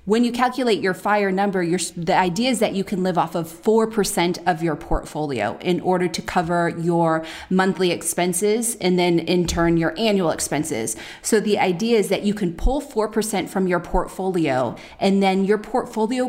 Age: 30-49